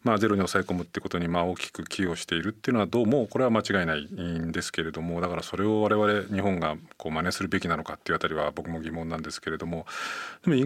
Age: 40-59